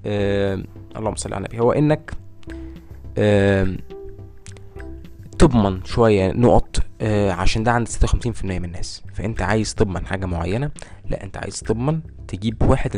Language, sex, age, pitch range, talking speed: Arabic, male, 20-39, 95-115 Hz, 155 wpm